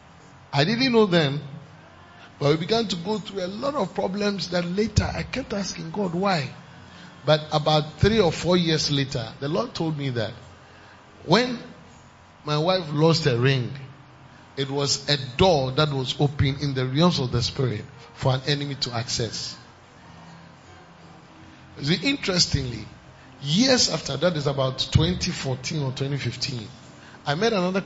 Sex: male